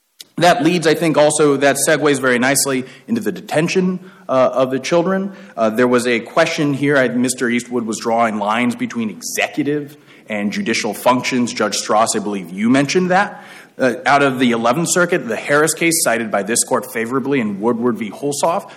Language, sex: English, male